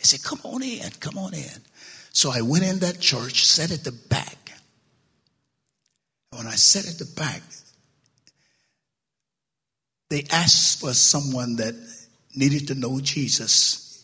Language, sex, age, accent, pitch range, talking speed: English, male, 60-79, American, 135-165 Hz, 140 wpm